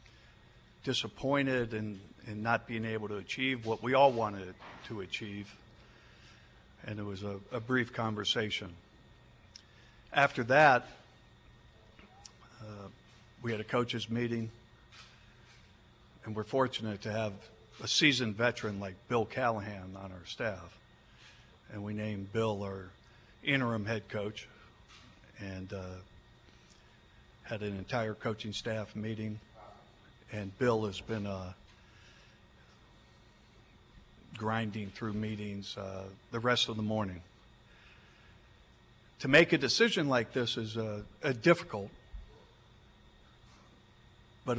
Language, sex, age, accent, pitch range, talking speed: English, male, 60-79, American, 105-120 Hz, 110 wpm